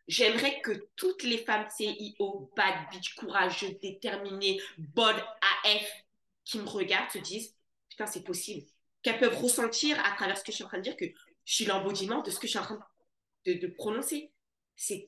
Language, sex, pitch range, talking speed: French, female, 195-265 Hz, 190 wpm